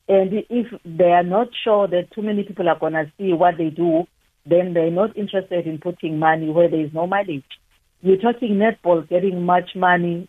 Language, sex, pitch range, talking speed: English, female, 175-210 Hz, 205 wpm